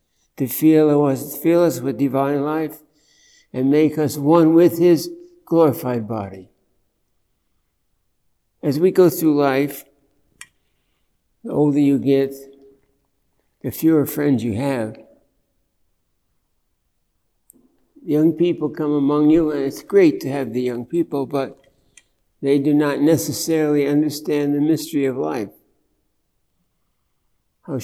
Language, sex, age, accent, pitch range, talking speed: English, male, 60-79, American, 135-160 Hz, 110 wpm